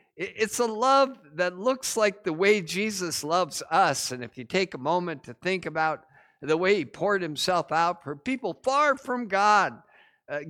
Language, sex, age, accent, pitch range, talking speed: English, male, 50-69, American, 170-240 Hz, 185 wpm